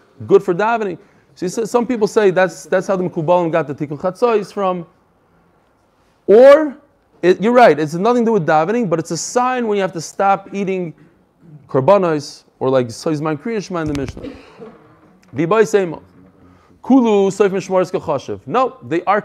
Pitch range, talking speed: 155-200 Hz, 160 wpm